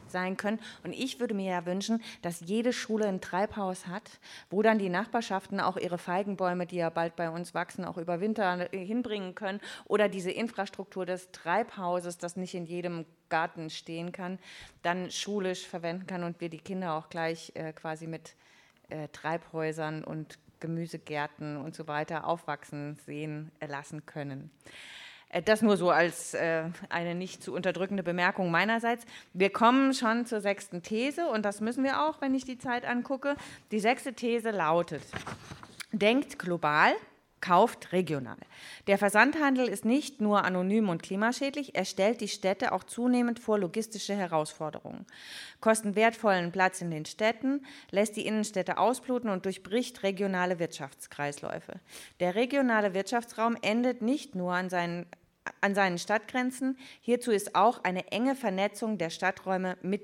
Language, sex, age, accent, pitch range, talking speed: German, female, 30-49, German, 175-220 Hz, 155 wpm